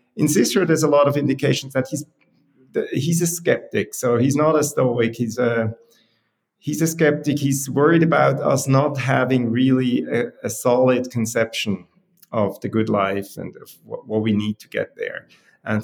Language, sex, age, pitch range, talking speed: English, male, 30-49, 120-145 Hz, 180 wpm